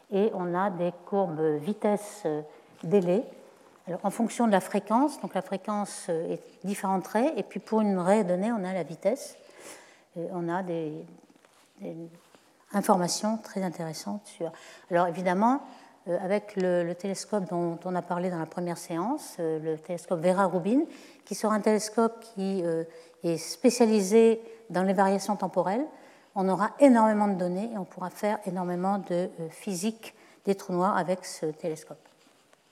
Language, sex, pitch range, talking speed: French, female, 180-230 Hz, 155 wpm